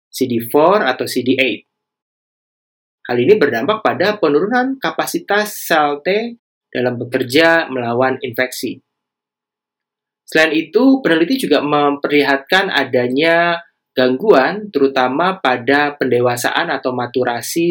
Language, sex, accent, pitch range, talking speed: Indonesian, male, native, 125-165 Hz, 90 wpm